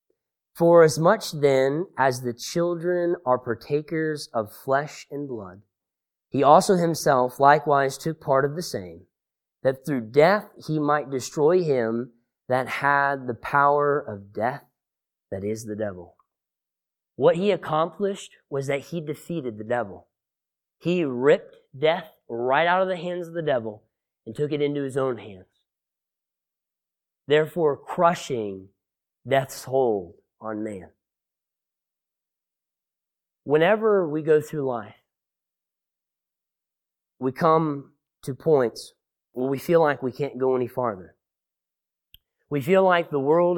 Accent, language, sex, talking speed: American, English, male, 130 wpm